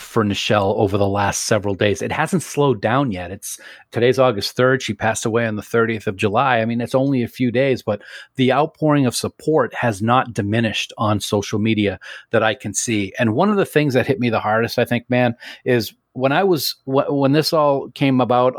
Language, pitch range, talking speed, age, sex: English, 105-130 Hz, 220 wpm, 40-59, male